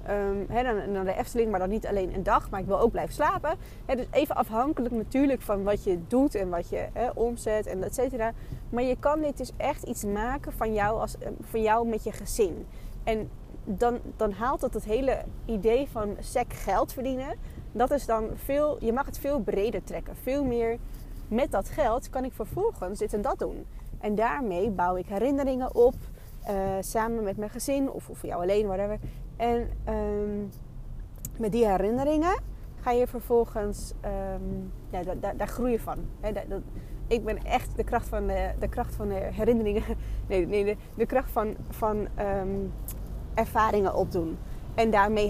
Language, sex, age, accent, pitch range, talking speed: Dutch, female, 20-39, Dutch, 195-240 Hz, 190 wpm